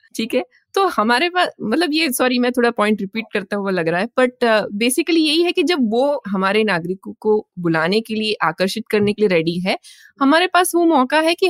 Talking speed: 220 wpm